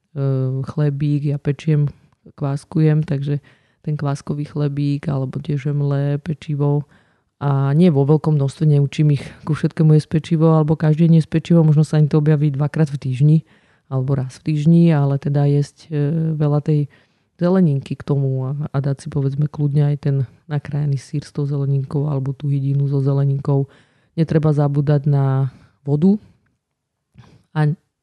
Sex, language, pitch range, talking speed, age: female, Slovak, 145-160 Hz, 145 wpm, 30-49